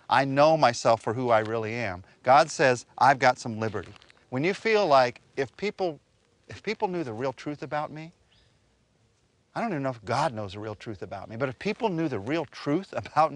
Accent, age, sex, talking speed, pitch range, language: American, 40-59, male, 215 wpm, 110-155 Hz, English